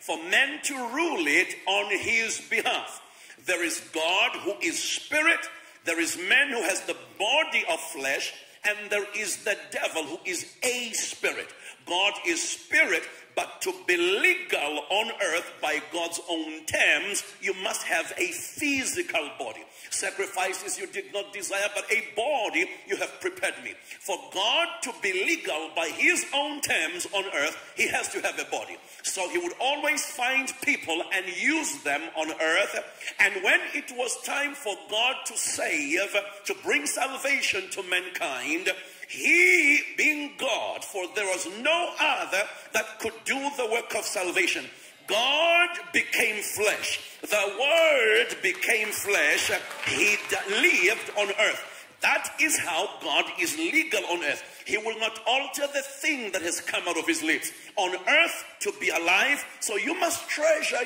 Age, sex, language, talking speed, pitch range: 50-69, male, English, 160 wpm, 225-345 Hz